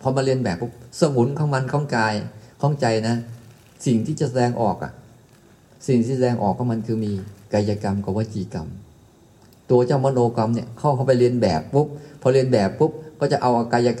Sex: male